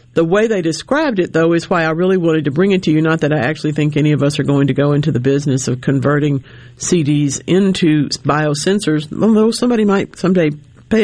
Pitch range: 130-170 Hz